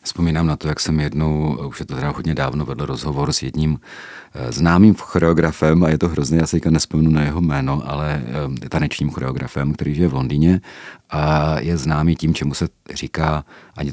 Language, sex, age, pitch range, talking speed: Czech, male, 40-59, 75-90 Hz, 190 wpm